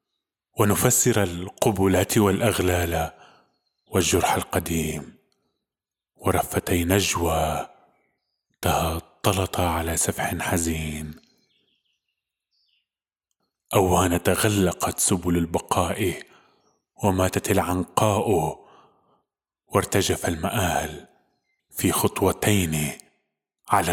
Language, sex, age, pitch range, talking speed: Arabic, male, 20-39, 85-105 Hz, 55 wpm